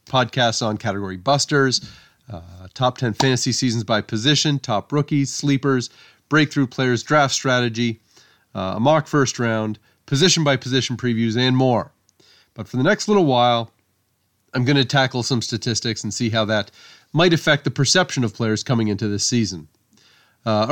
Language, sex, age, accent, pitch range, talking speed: English, male, 30-49, American, 105-140 Hz, 160 wpm